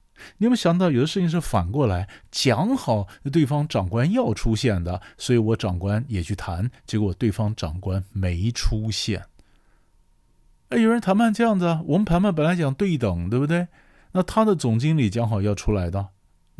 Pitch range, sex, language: 95-130 Hz, male, Chinese